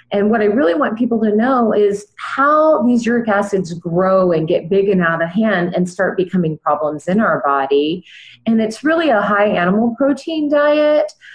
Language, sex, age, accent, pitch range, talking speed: English, female, 30-49, American, 165-225 Hz, 190 wpm